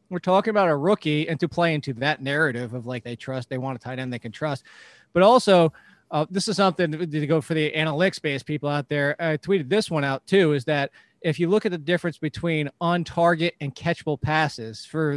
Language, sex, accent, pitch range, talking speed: English, male, American, 145-185 Hz, 235 wpm